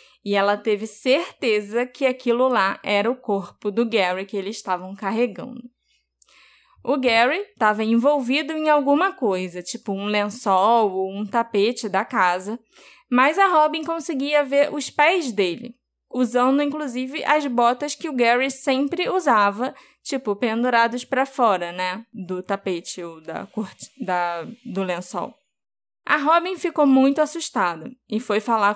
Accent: Brazilian